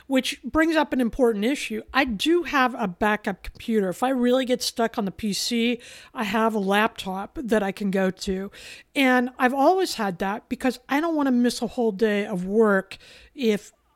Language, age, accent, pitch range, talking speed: English, 50-69, American, 205-255 Hz, 195 wpm